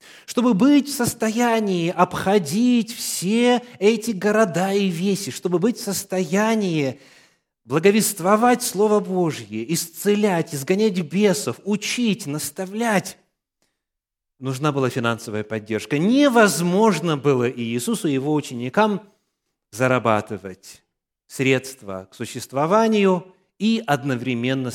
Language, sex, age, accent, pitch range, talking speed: Russian, male, 30-49, native, 140-215 Hz, 95 wpm